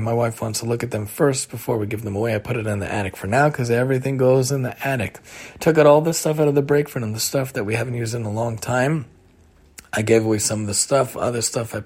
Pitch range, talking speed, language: 110-130 Hz, 290 wpm, English